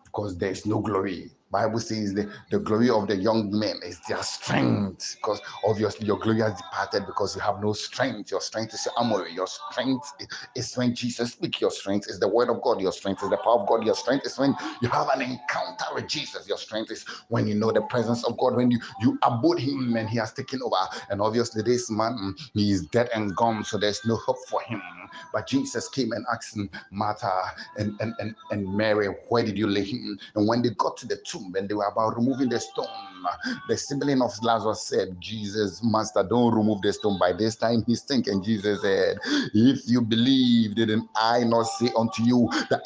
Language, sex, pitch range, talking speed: English, male, 105-120 Hz, 220 wpm